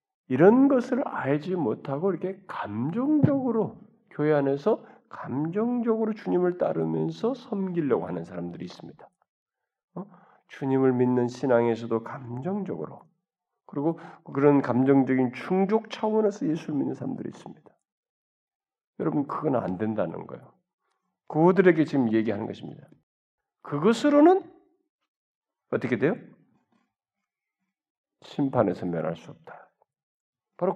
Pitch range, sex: 135-225 Hz, male